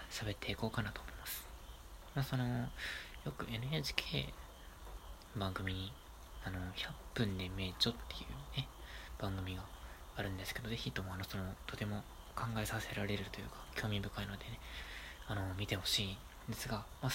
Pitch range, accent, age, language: 75-115 Hz, native, 20-39, Japanese